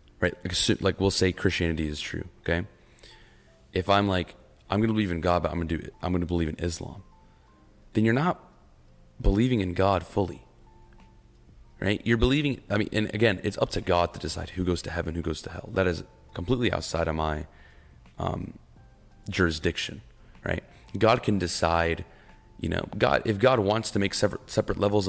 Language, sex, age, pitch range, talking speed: English, male, 30-49, 85-100 Hz, 195 wpm